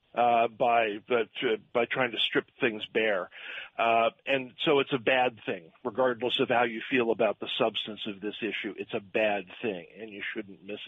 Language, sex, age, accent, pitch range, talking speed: English, male, 50-69, American, 115-140 Hz, 195 wpm